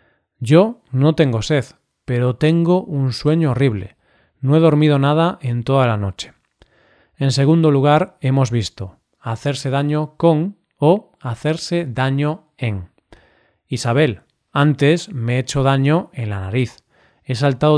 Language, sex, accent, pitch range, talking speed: Spanish, male, Spanish, 115-150 Hz, 135 wpm